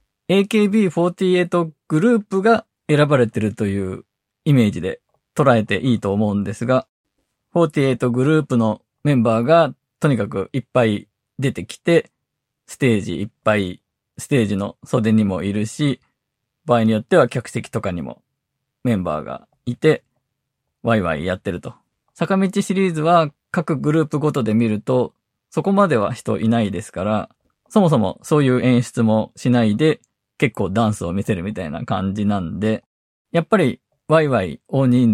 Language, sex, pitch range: Japanese, male, 105-150 Hz